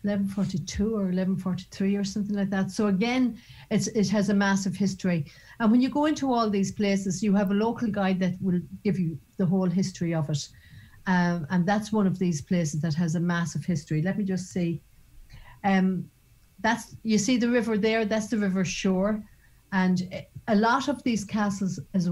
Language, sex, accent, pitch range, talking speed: English, female, Irish, 170-205 Hz, 195 wpm